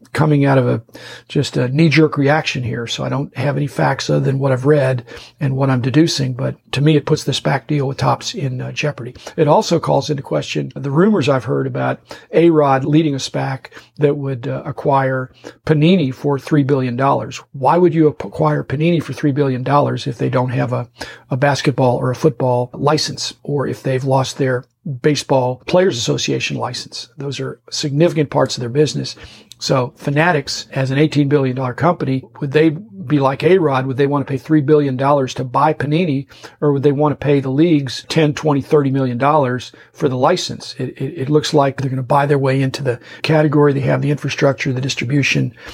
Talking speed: 200 wpm